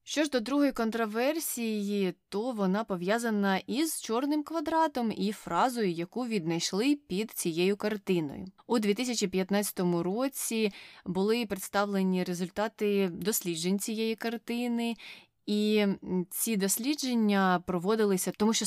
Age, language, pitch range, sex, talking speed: 20-39, Ukrainian, 180-225 Hz, female, 105 wpm